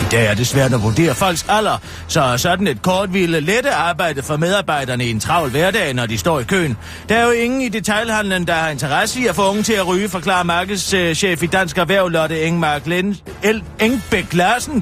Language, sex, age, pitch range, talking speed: Danish, male, 40-59, 140-200 Hz, 220 wpm